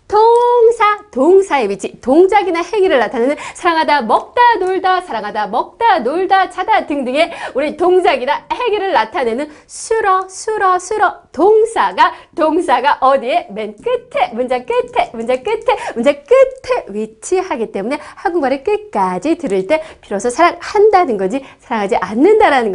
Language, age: Korean, 30-49